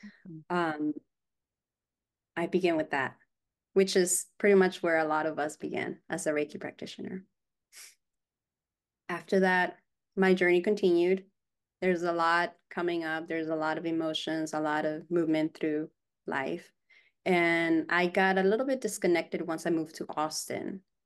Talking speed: 150 wpm